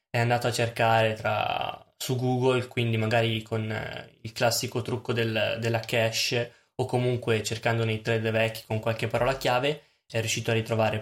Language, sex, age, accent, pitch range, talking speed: Italian, male, 10-29, native, 115-125 Hz, 170 wpm